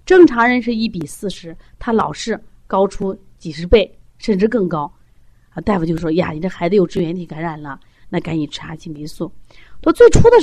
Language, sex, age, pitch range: Chinese, female, 30-49, 175-275 Hz